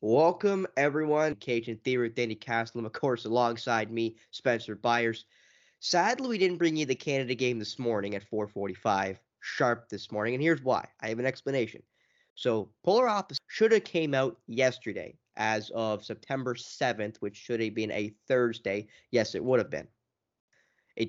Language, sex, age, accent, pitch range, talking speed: English, male, 10-29, American, 110-145 Hz, 170 wpm